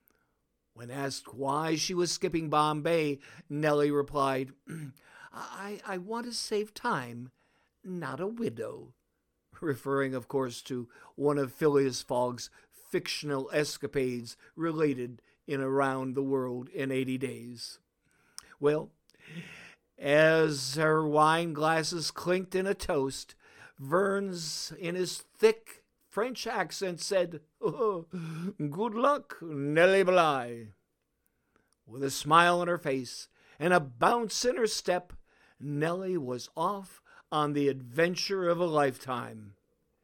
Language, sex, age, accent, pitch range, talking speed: English, male, 60-79, American, 135-180 Hz, 115 wpm